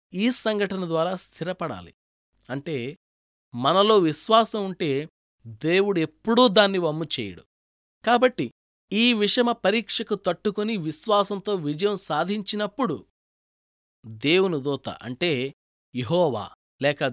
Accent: native